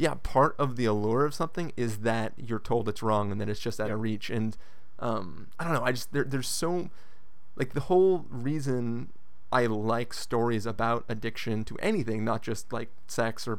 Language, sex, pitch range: English, male, 115-135 Hz